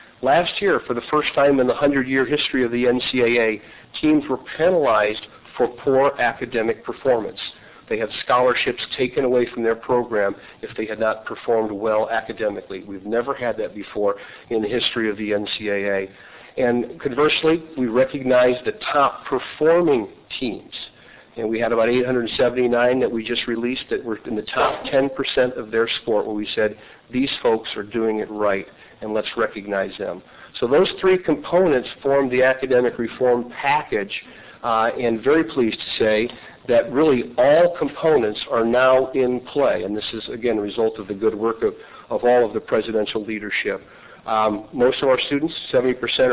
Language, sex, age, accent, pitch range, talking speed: English, male, 50-69, American, 115-135 Hz, 170 wpm